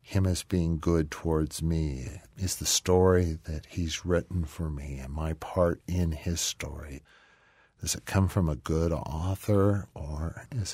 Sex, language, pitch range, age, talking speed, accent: male, English, 75-95 Hz, 50-69, 160 wpm, American